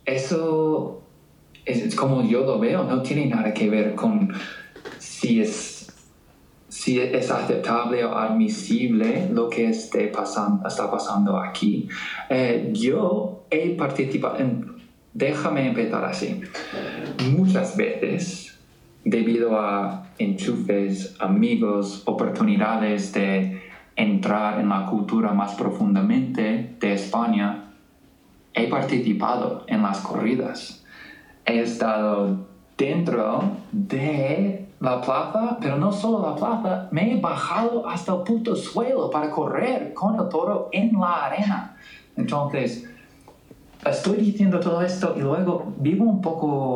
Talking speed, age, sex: 120 wpm, 20-39, male